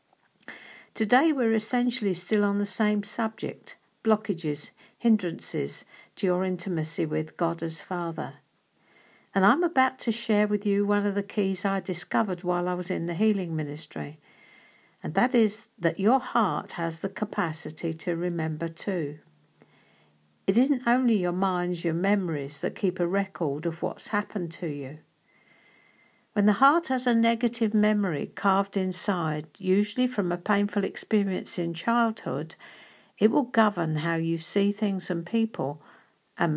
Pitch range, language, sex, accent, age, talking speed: 170-225 Hz, English, female, British, 60-79, 150 wpm